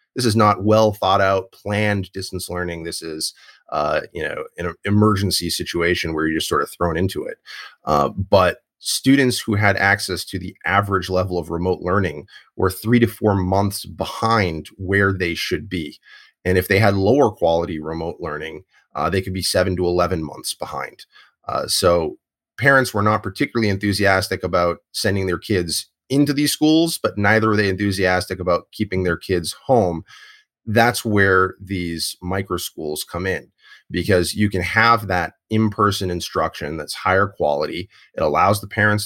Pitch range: 90-110 Hz